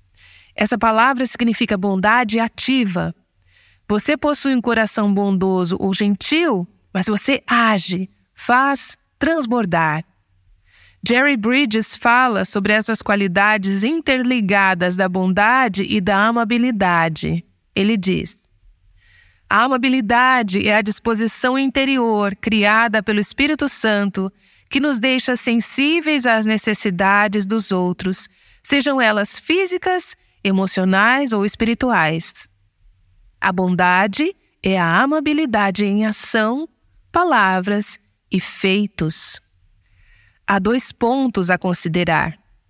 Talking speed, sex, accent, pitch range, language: 100 wpm, female, Brazilian, 185-240 Hz, Portuguese